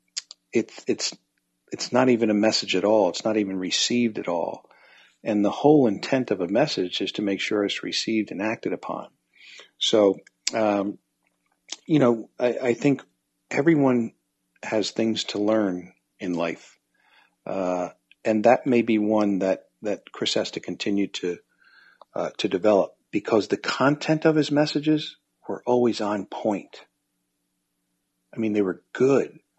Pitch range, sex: 95-115 Hz, male